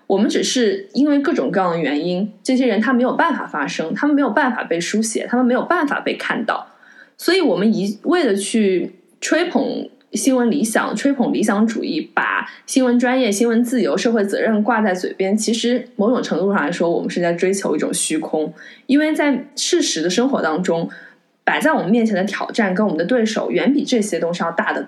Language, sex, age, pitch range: Chinese, female, 20-39, 185-255 Hz